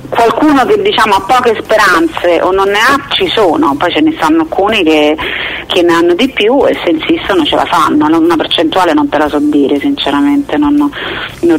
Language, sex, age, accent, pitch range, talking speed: Italian, female, 40-59, native, 155-245 Hz, 200 wpm